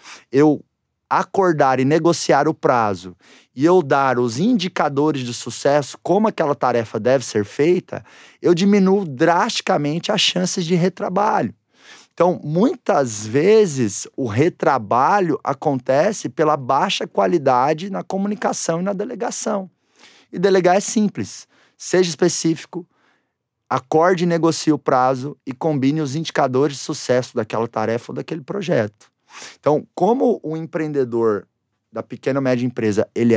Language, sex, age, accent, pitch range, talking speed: Portuguese, male, 20-39, Brazilian, 125-180 Hz, 130 wpm